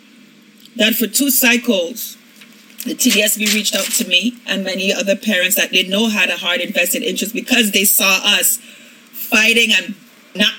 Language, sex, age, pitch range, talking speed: English, female, 30-49, 205-245 Hz, 165 wpm